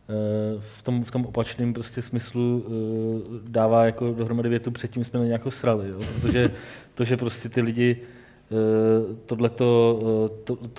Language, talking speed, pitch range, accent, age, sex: Czech, 160 wpm, 115-125 Hz, native, 20-39, male